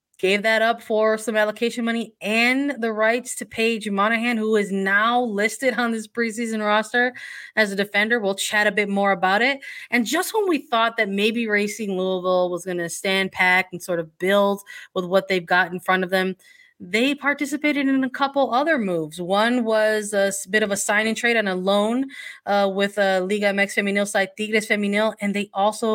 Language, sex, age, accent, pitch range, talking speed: English, female, 20-39, American, 180-230 Hz, 200 wpm